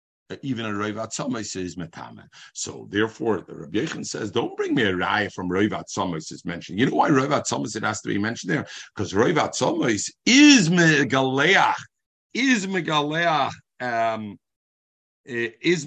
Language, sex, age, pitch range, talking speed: English, male, 50-69, 120-170 Hz, 160 wpm